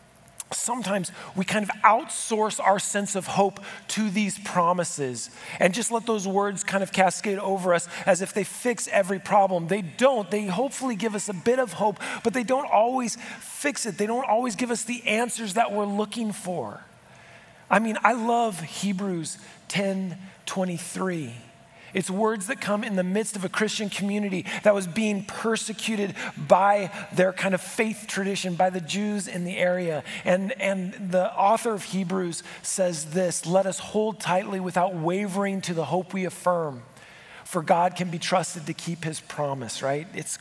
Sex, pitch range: male, 180-210 Hz